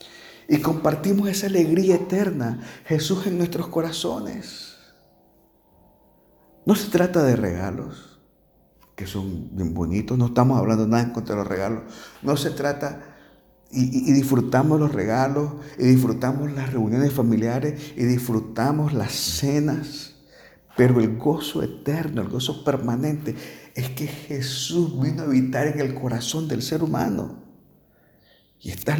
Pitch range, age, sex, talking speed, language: 100-145 Hz, 50-69, male, 135 wpm, Spanish